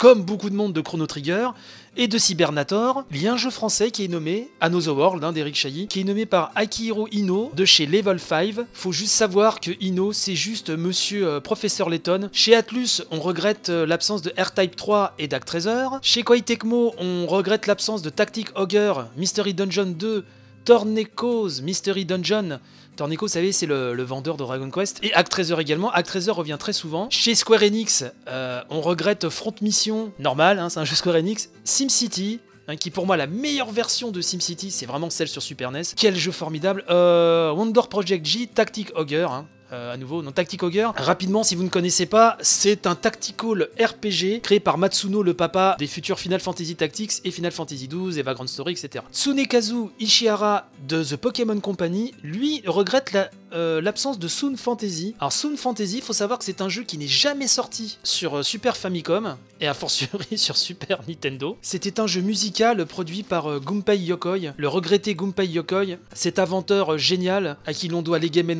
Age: 30-49